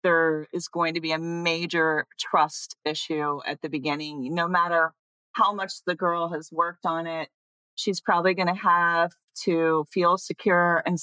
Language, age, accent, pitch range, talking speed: English, 40-59, American, 155-180 Hz, 170 wpm